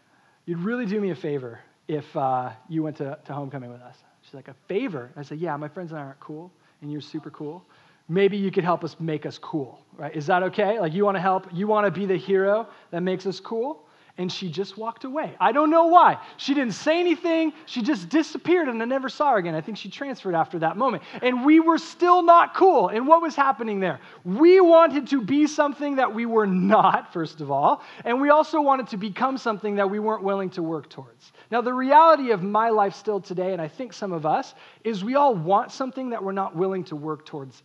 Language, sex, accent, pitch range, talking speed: English, male, American, 160-230 Hz, 235 wpm